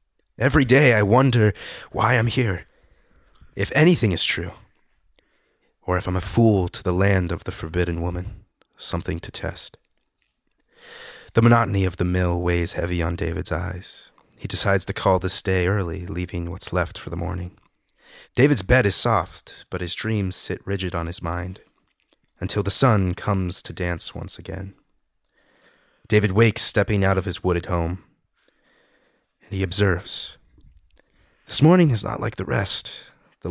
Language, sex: English, male